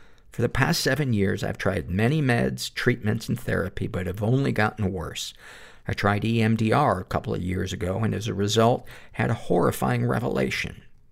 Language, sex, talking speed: English, male, 180 wpm